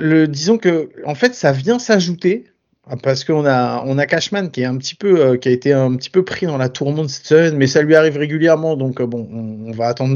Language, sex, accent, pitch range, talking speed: French, male, French, 130-160 Hz, 260 wpm